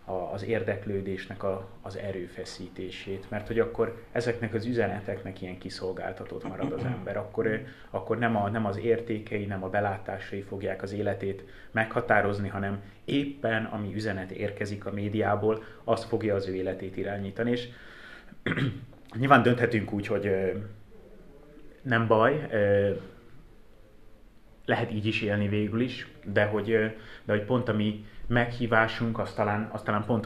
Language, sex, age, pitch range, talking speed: Hungarian, male, 30-49, 95-115 Hz, 135 wpm